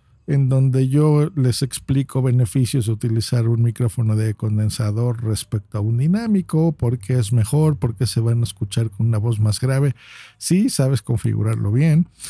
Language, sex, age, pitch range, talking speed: Spanish, male, 50-69, 115-160 Hz, 170 wpm